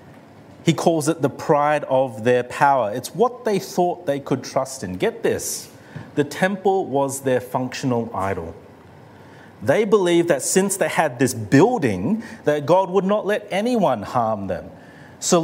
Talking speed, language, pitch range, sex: 160 wpm, English, 115-160 Hz, male